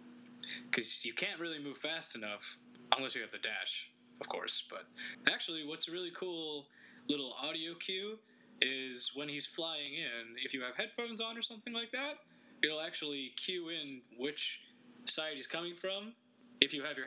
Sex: male